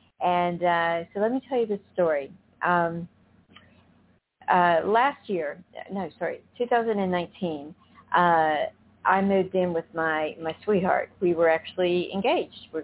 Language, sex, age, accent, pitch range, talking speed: English, female, 50-69, American, 175-205 Hz, 135 wpm